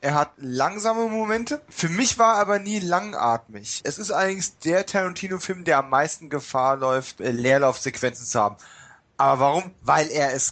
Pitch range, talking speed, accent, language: 135-185 Hz, 165 wpm, German, German